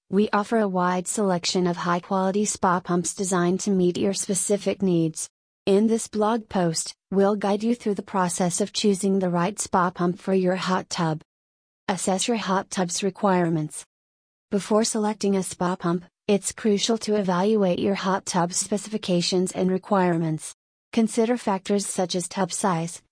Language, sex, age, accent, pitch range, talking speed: English, female, 30-49, American, 175-205 Hz, 160 wpm